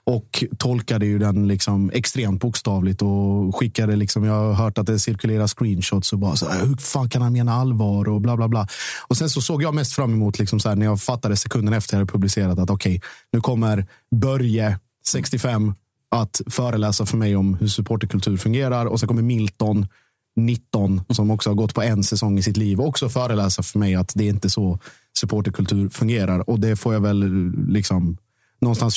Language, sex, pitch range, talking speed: Swedish, male, 100-120 Hz, 205 wpm